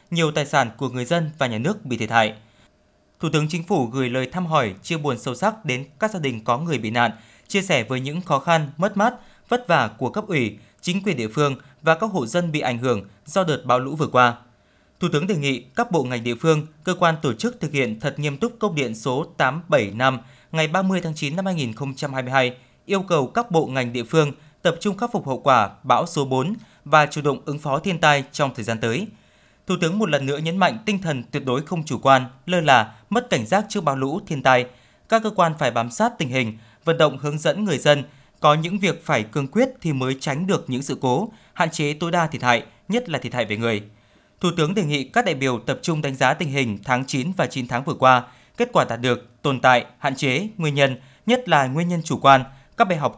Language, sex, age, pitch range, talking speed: Vietnamese, male, 20-39, 125-170 Hz, 250 wpm